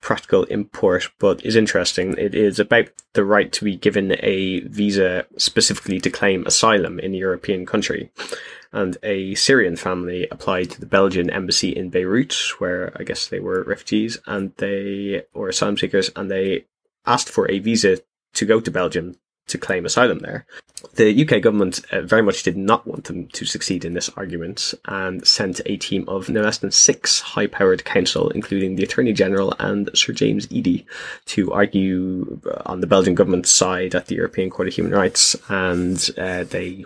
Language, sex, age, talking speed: English, male, 10-29, 180 wpm